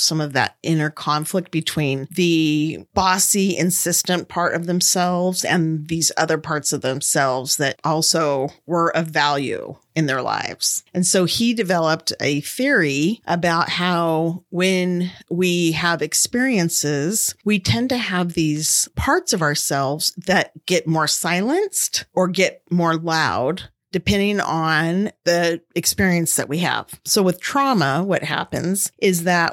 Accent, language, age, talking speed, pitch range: American, English, 40-59, 140 wpm, 160-185 Hz